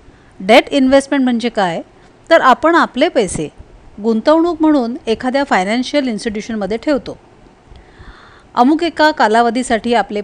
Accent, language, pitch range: native, Marathi, 210-285 Hz